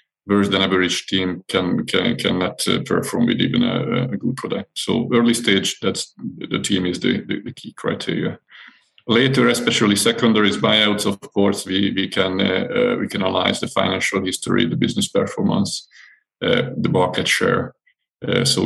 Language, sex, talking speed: English, male, 165 wpm